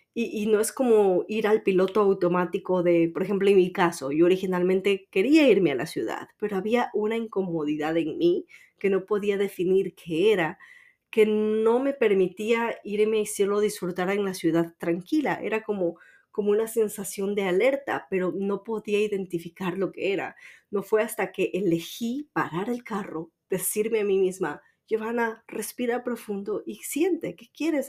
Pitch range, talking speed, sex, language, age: 175-215 Hz, 170 wpm, female, Spanish, 30-49